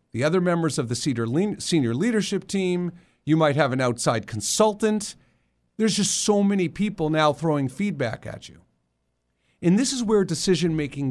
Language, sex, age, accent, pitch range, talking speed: English, male, 50-69, American, 120-195 Hz, 155 wpm